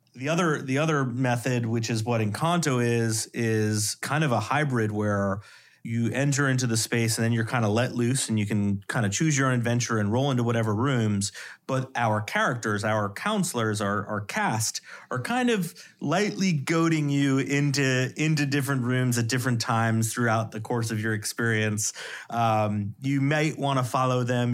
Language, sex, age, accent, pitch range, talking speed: English, male, 30-49, American, 110-135 Hz, 185 wpm